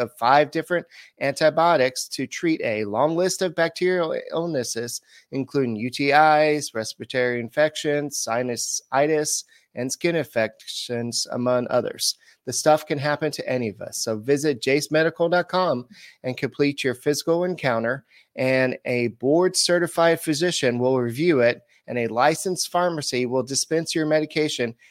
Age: 30-49